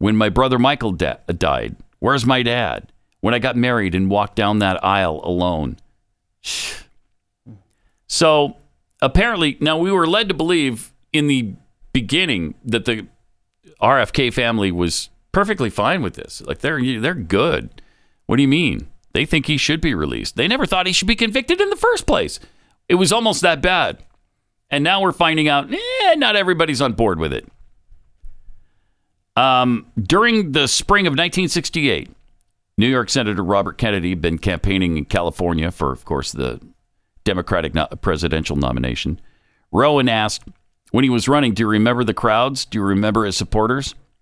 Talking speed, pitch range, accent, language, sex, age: 165 wpm, 95-140 Hz, American, English, male, 50-69